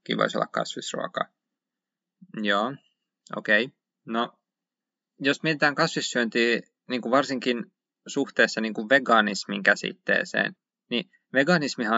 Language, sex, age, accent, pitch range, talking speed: Finnish, male, 20-39, native, 110-165 Hz, 95 wpm